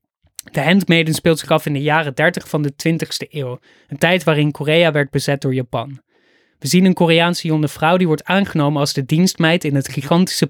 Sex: male